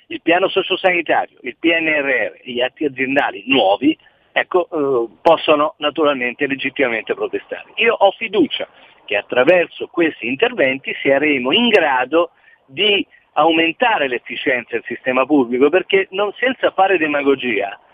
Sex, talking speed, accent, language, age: male, 125 wpm, native, Italian, 50-69